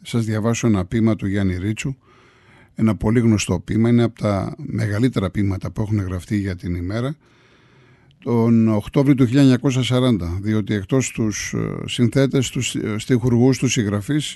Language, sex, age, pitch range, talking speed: Greek, male, 50-69, 110-140 Hz, 140 wpm